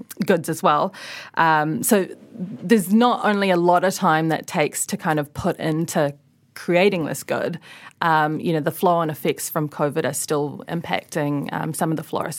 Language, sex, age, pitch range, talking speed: English, female, 30-49, 150-185 Hz, 190 wpm